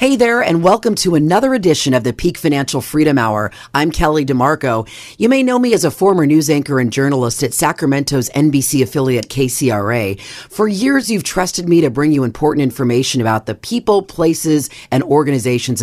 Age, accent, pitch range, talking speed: 40-59, American, 125-175 Hz, 180 wpm